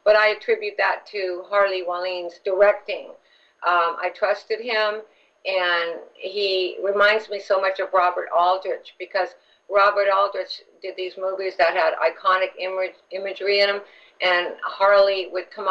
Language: English